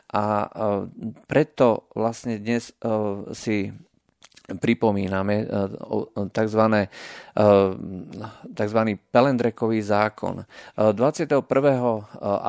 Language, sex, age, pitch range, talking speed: Slovak, male, 40-59, 100-115 Hz, 55 wpm